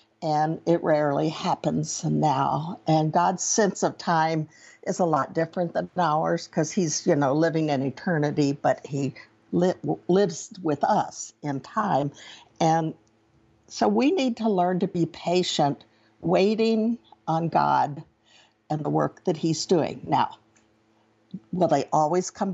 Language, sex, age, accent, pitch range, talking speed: English, female, 60-79, American, 145-190 Hz, 140 wpm